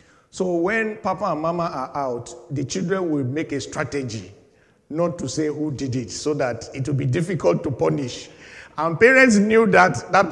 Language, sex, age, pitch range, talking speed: English, male, 50-69, 160-240 Hz, 185 wpm